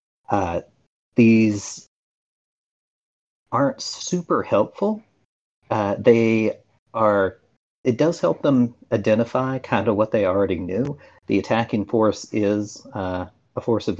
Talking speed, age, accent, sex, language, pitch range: 115 wpm, 40-59, American, male, English, 100-120 Hz